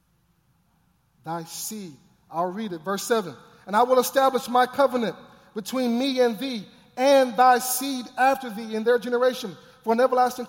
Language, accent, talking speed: English, American, 160 wpm